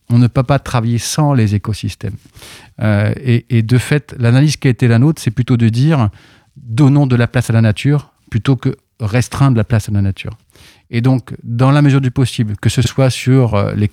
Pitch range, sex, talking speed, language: 110-130 Hz, male, 215 wpm, French